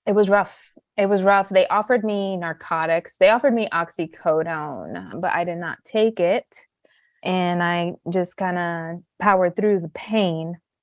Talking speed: 160 wpm